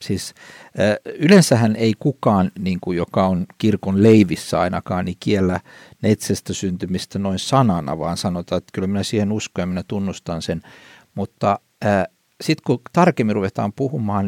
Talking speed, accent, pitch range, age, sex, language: 130 wpm, native, 100-135 Hz, 60-79, male, Finnish